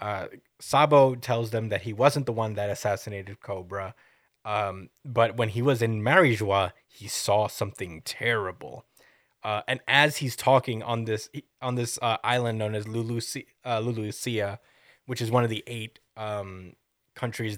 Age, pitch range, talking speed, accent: 20-39, 105-125 Hz, 160 wpm, American